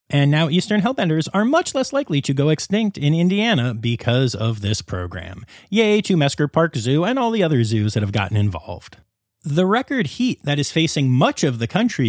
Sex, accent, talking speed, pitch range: male, American, 205 wpm, 120-185 Hz